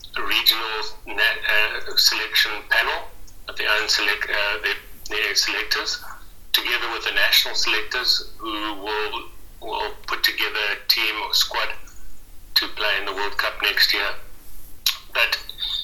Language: English